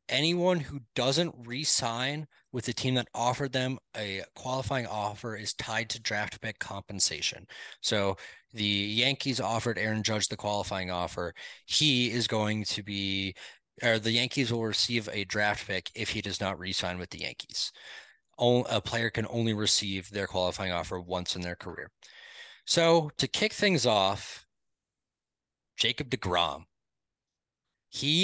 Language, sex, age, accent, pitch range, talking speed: English, male, 20-39, American, 100-125 Hz, 145 wpm